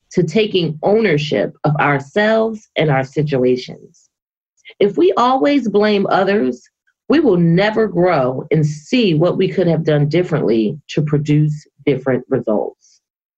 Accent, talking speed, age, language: American, 130 wpm, 30-49, English